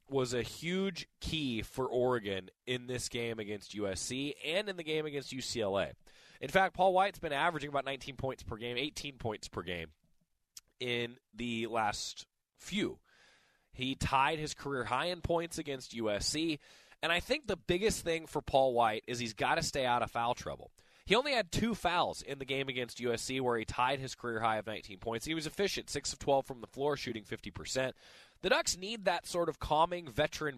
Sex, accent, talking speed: male, American, 200 wpm